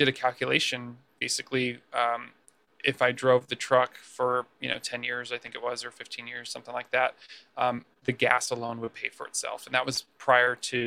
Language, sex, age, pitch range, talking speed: English, male, 20-39, 120-130 Hz, 210 wpm